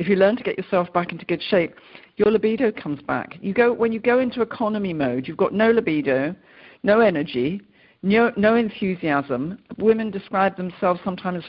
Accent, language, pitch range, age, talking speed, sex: British, English, 165-210 Hz, 50-69, 190 wpm, female